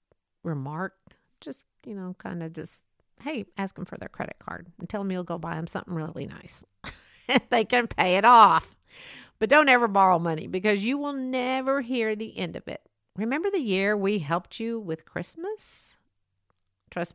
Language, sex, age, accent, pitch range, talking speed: English, female, 50-69, American, 185-265 Hz, 180 wpm